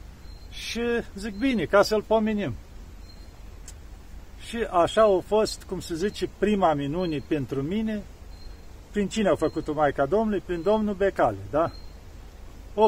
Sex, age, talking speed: male, 50-69, 130 wpm